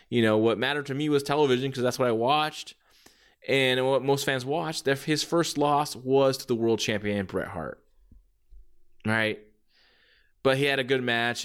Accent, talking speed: American, 185 wpm